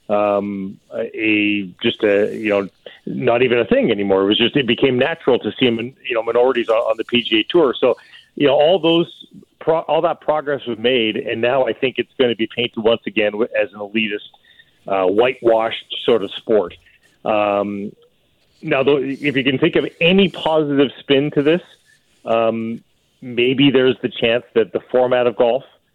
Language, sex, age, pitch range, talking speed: English, male, 40-59, 110-135 Hz, 185 wpm